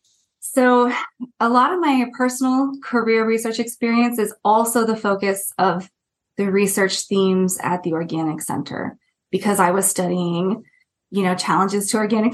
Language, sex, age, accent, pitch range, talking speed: English, female, 20-39, American, 195-235 Hz, 145 wpm